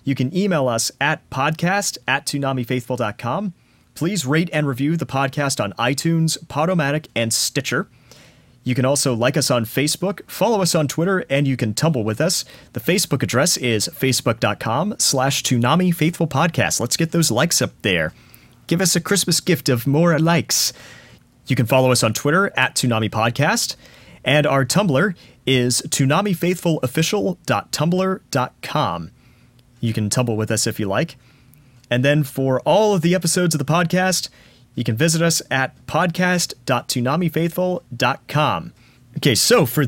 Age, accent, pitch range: 30-49, American, 120-165 Hz